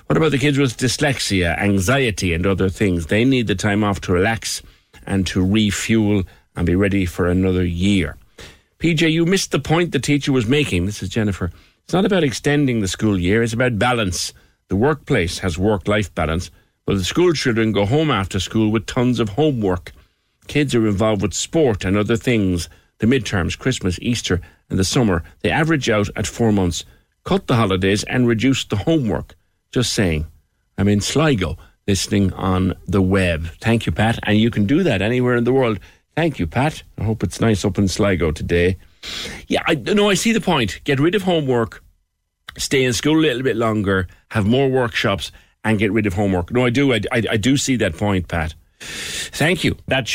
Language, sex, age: English, male, 50-69